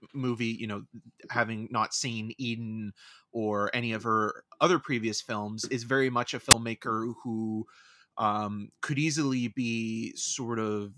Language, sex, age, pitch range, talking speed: English, male, 30-49, 110-130 Hz, 140 wpm